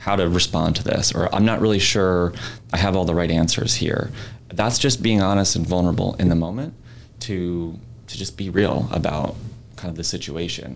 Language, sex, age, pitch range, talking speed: English, male, 30-49, 85-115 Hz, 200 wpm